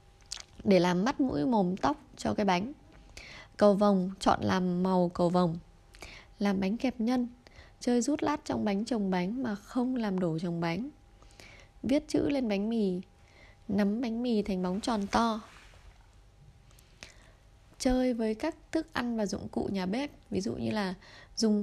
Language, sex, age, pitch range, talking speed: Vietnamese, female, 20-39, 190-245 Hz, 165 wpm